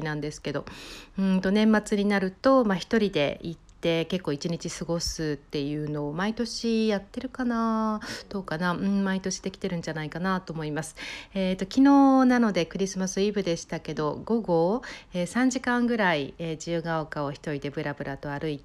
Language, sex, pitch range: Japanese, female, 160-215 Hz